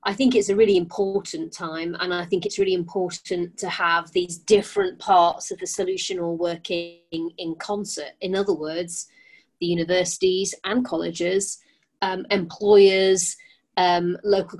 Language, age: English, 30-49